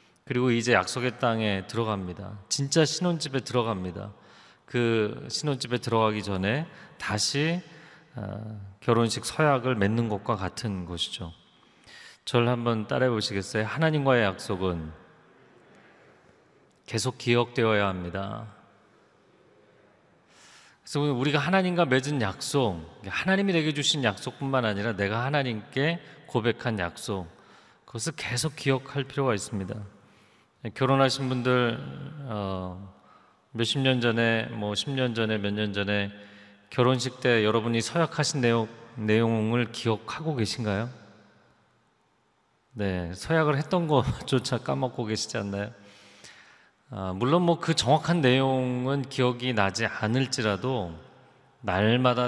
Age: 40-59